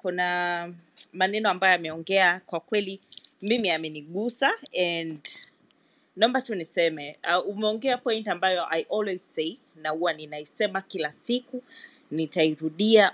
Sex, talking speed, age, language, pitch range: female, 115 wpm, 30-49, Swahili, 165-215 Hz